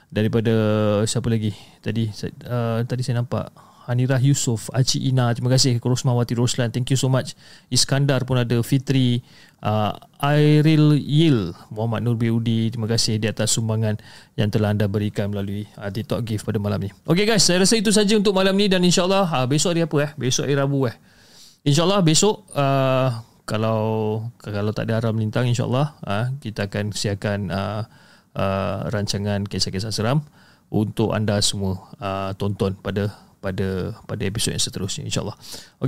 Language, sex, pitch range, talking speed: Malay, male, 110-140 Hz, 165 wpm